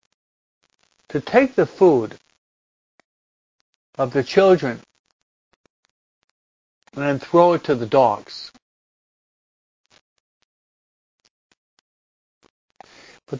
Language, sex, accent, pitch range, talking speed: English, male, American, 130-170 Hz, 65 wpm